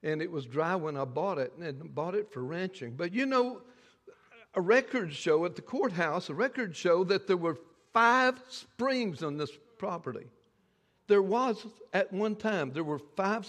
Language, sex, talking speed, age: English, male, 185 wpm, 60-79